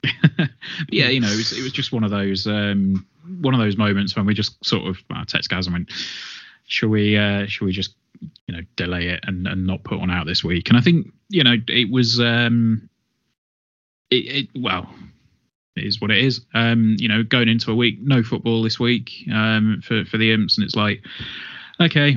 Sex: male